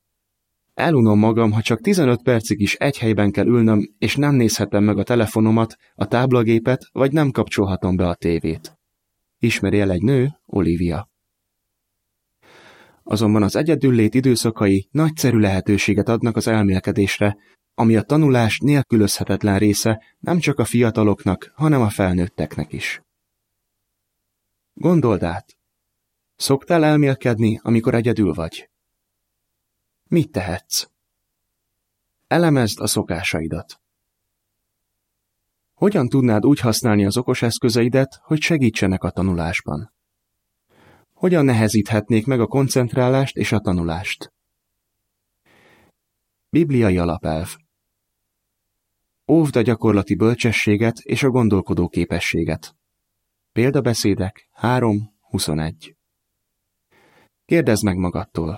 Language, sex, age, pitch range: Hungarian, male, 30-49, 100-120 Hz